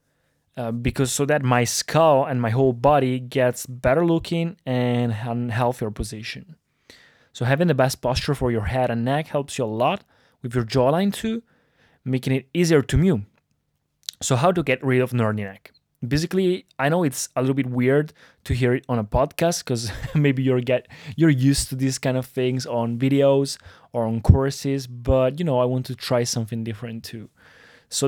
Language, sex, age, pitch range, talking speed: Italian, male, 20-39, 125-150 Hz, 190 wpm